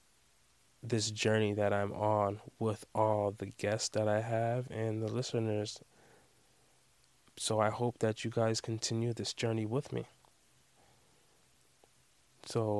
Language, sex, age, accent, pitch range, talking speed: English, male, 20-39, American, 105-125 Hz, 125 wpm